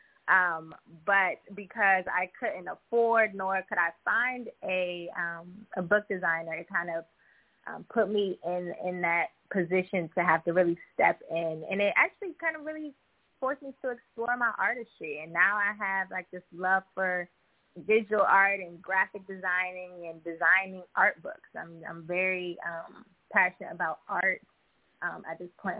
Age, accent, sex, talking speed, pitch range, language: 20-39, American, female, 165 wpm, 170-205 Hz, English